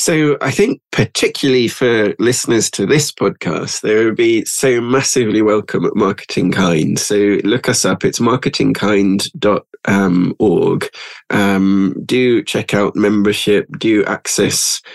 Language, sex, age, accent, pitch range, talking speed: English, male, 20-39, British, 100-115 Hz, 120 wpm